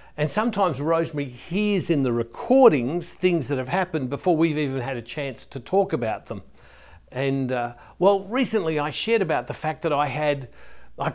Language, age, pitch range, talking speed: English, 60-79, 130-175 Hz, 185 wpm